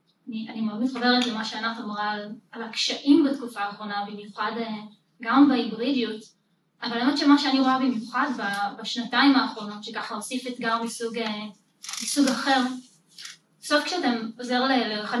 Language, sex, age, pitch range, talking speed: Hebrew, female, 20-39, 220-275 Hz, 130 wpm